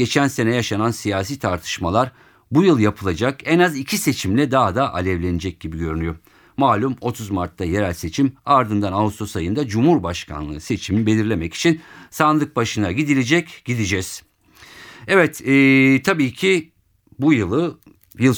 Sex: male